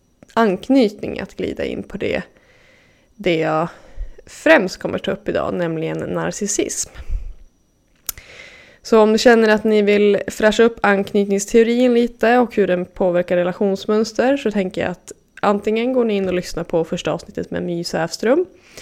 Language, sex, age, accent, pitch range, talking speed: English, female, 20-39, Swedish, 185-235 Hz, 150 wpm